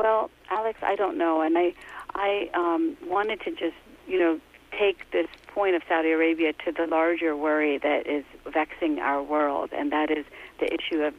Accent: American